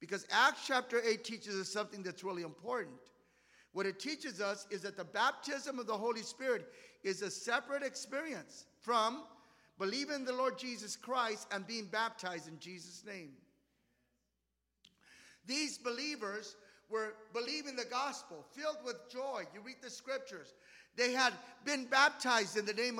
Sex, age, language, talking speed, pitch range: male, 50-69, English, 155 wpm, 210-270 Hz